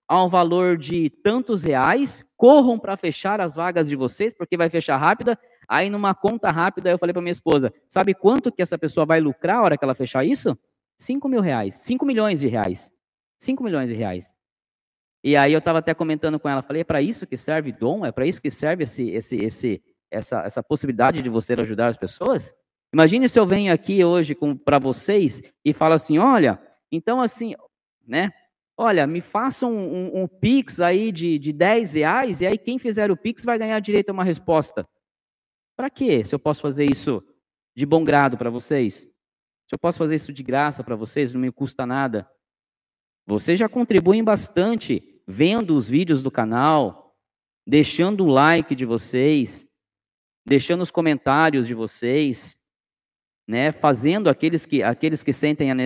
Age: 20-39